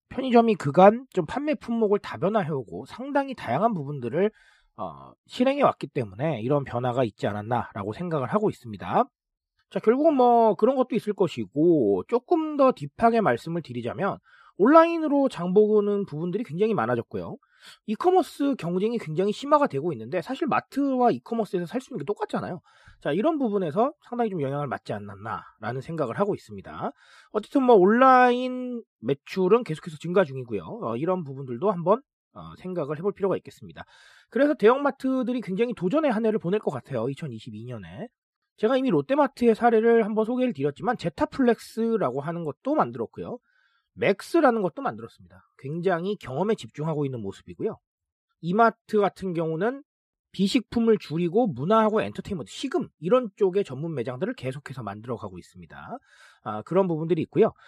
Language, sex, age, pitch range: Korean, male, 40-59, 150-240 Hz